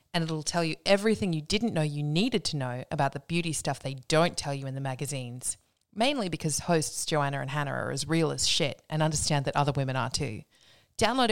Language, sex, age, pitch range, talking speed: English, female, 20-39, 150-190 Hz, 225 wpm